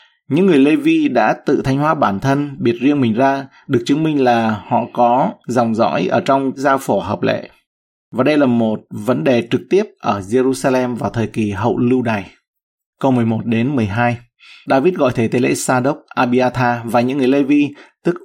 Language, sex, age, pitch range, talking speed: Vietnamese, male, 20-39, 115-140 Hz, 195 wpm